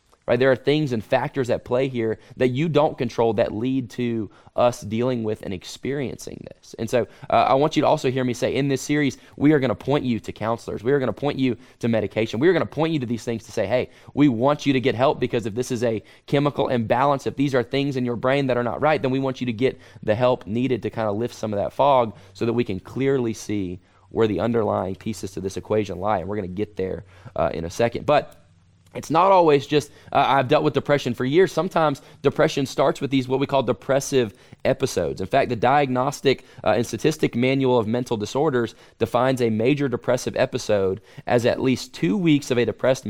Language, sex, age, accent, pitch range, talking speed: English, male, 20-39, American, 110-140 Hz, 245 wpm